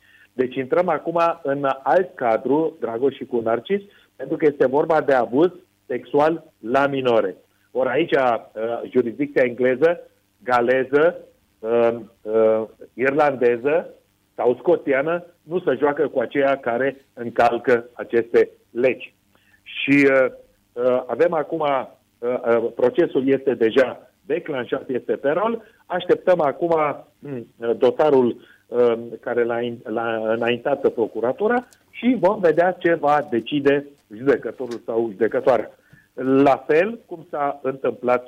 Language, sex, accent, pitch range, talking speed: Romanian, male, native, 120-170 Hz, 105 wpm